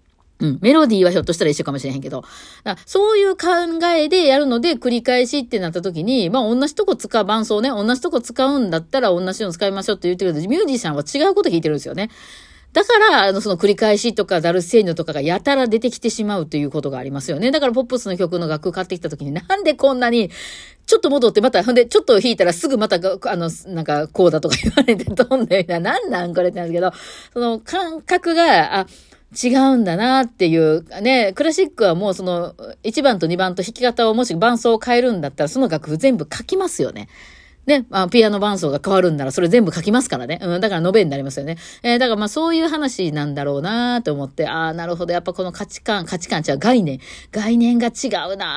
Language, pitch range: Japanese, 160-250 Hz